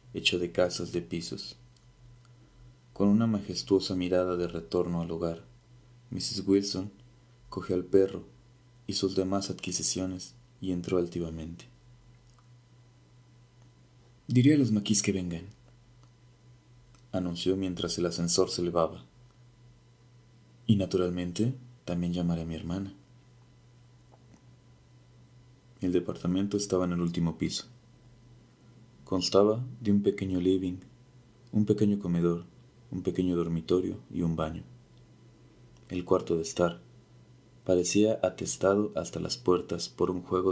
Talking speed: 115 wpm